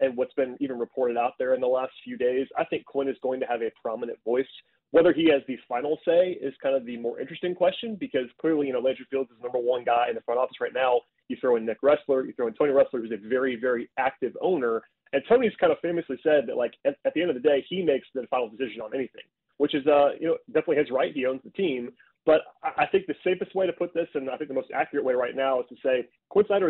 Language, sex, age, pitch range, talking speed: English, male, 30-49, 130-170 Hz, 280 wpm